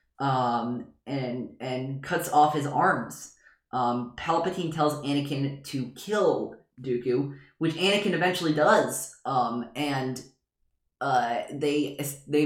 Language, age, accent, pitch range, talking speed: English, 20-39, American, 135-165 Hz, 110 wpm